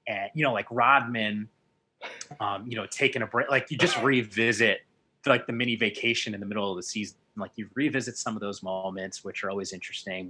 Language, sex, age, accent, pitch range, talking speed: English, male, 30-49, American, 95-115 Hz, 210 wpm